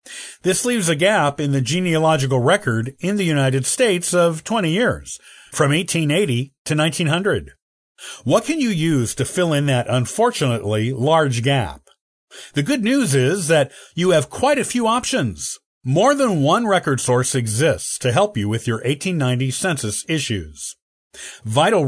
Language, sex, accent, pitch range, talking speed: English, male, American, 125-180 Hz, 155 wpm